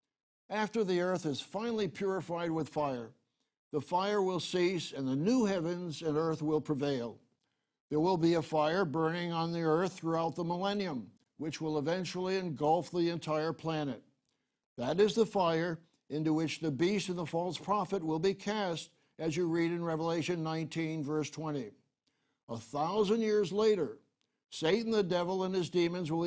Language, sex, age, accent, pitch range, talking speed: English, male, 60-79, American, 155-190 Hz, 165 wpm